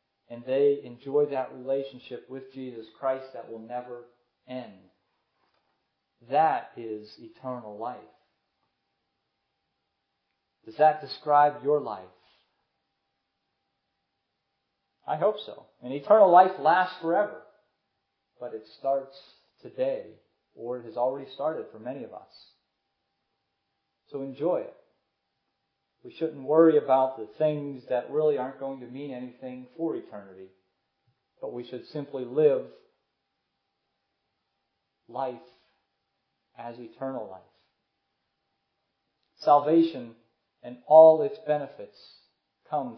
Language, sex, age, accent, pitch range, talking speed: English, male, 40-59, American, 120-155 Hz, 105 wpm